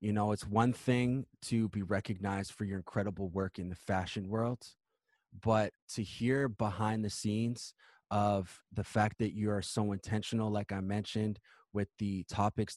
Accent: American